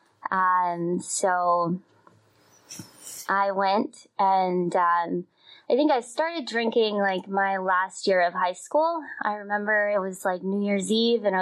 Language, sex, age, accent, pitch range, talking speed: English, female, 20-39, American, 175-205 Hz, 145 wpm